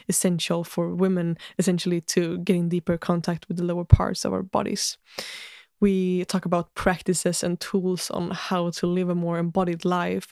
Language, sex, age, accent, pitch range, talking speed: Swedish, female, 20-39, native, 170-190 Hz, 175 wpm